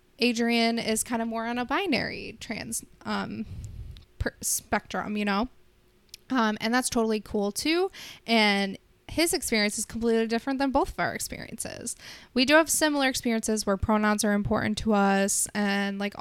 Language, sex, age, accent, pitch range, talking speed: English, female, 20-39, American, 200-230 Hz, 160 wpm